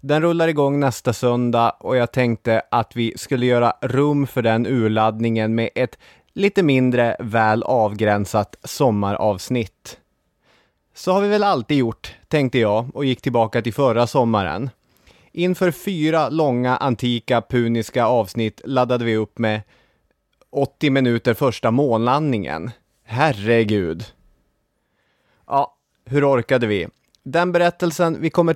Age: 30-49